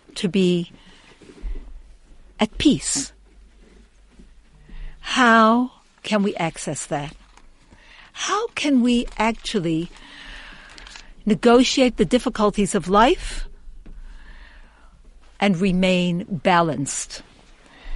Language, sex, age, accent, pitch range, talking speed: English, female, 60-79, American, 180-245 Hz, 70 wpm